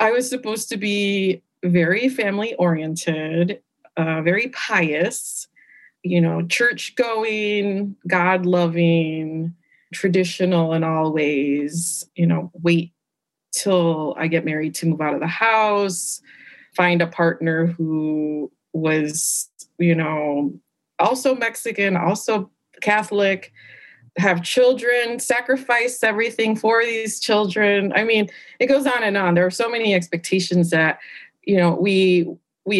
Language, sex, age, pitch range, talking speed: English, female, 30-49, 165-210 Hz, 125 wpm